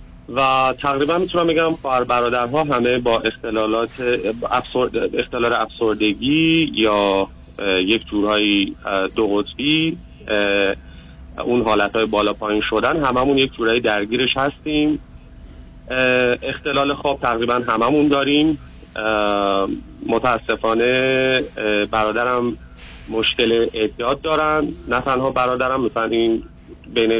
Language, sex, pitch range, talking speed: Persian, male, 105-130 Hz, 95 wpm